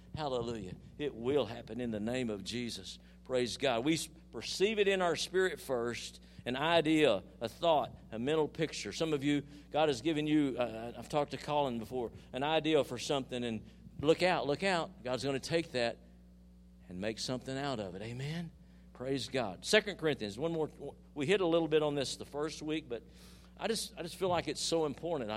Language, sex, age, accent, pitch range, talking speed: English, male, 50-69, American, 100-160 Hz, 200 wpm